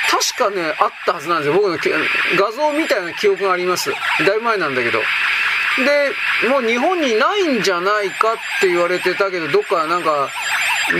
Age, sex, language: 40-59, male, Japanese